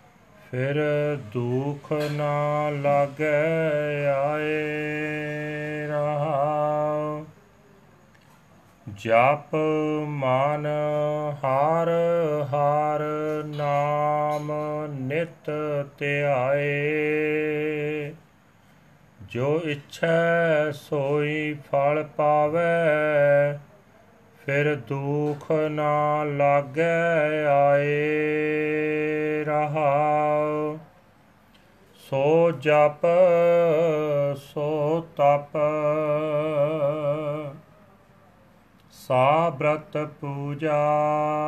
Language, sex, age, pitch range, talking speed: Punjabi, male, 40-59, 145-155 Hz, 45 wpm